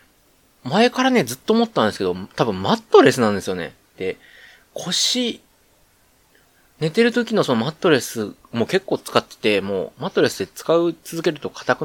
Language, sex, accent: Japanese, male, native